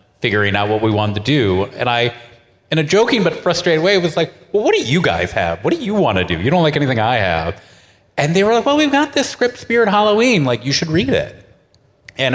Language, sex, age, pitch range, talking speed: English, male, 30-49, 110-155 Hz, 255 wpm